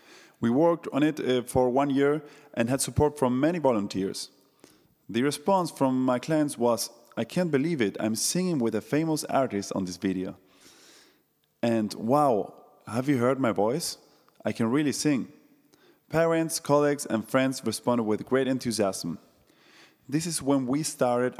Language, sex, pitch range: English, male, 115-145 Hz